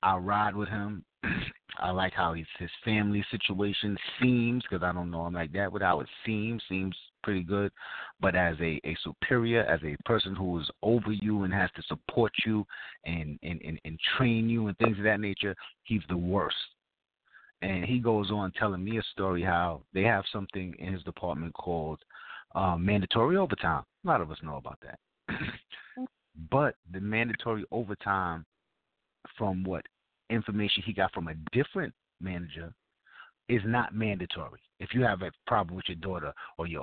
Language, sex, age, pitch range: English, male, 30-49, 85-115 Hz